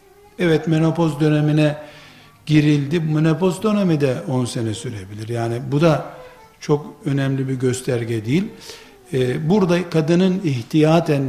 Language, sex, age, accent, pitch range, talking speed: Turkish, male, 60-79, native, 145-190 Hz, 115 wpm